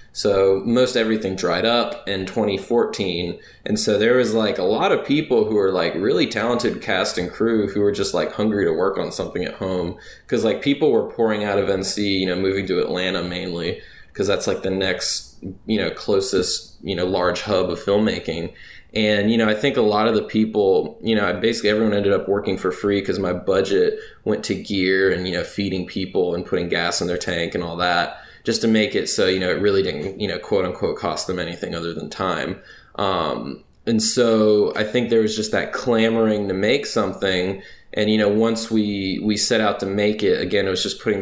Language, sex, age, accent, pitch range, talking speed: English, male, 20-39, American, 95-115 Hz, 220 wpm